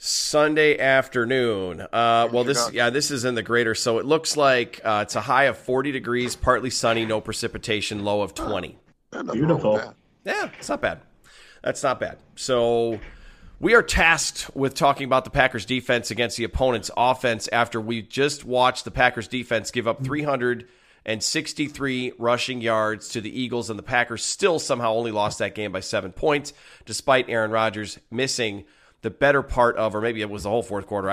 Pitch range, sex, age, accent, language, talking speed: 105-125 Hz, male, 30-49, American, English, 180 wpm